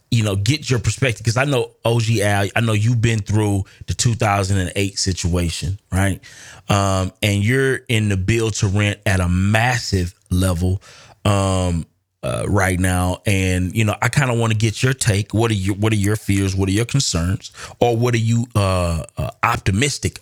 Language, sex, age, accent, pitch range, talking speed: English, male, 30-49, American, 95-120 Hz, 190 wpm